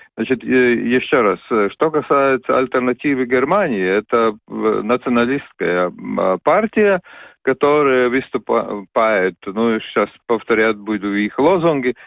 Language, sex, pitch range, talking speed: Russian, male, 120-155 Hz, 90 wpm